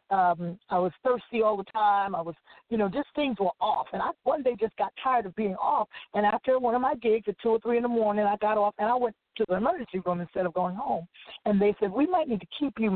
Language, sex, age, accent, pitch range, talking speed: English, female, 50-69, American, 180-220 Hz, 280 wpm